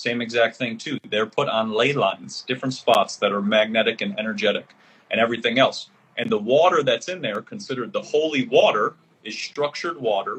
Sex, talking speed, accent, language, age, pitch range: male, 185 wpm, American, English, 30-49, 120-165 Hz